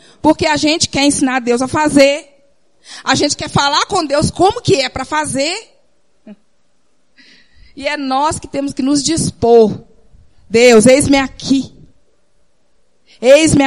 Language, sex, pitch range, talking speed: Portuguese, female, 200-280 Hz, 135 wpm